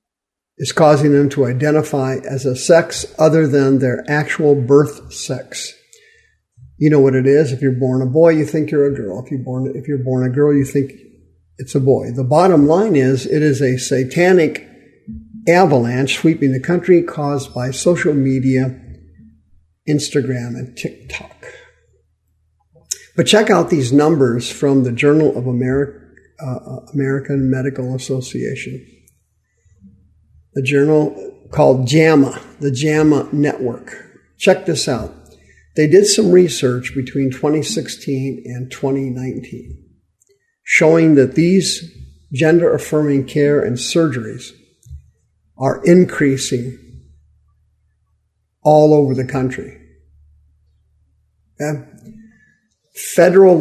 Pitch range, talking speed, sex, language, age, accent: 125-150 Hz, 115 wpm, male, English, 50-69, American